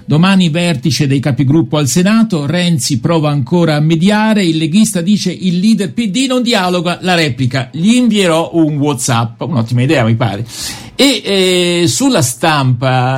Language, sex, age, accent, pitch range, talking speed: Italian, male, 50-69, native, 145-205 Hz, 150 wpm